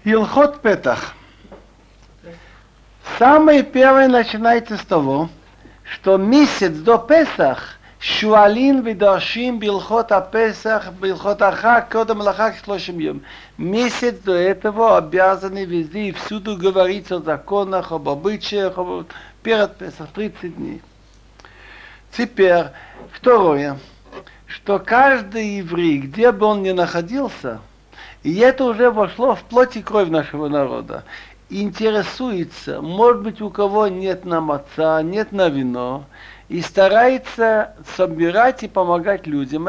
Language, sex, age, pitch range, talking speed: Russian, male, 60-79, 175-225 Hz, 115 wpm